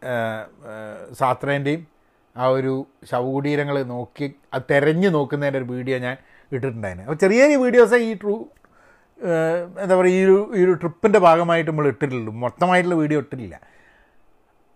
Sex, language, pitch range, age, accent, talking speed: male, Malayalam, 135-200 Hz, 30-49, native, 120 wpm